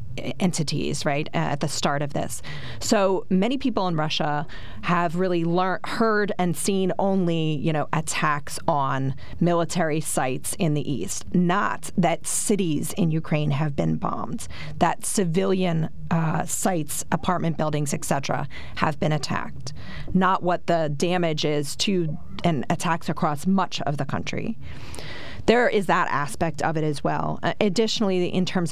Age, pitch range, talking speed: 30-49, 150-180 Hz, 150 wpm